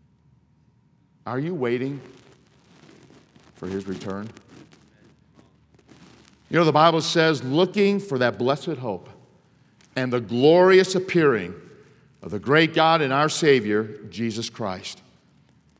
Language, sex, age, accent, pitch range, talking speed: English, male, 50-69, American, 125-160 Hz, 110 wpm